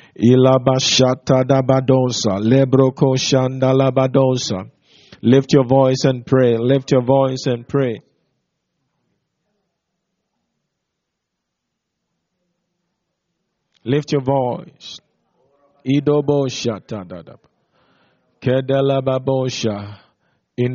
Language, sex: English, male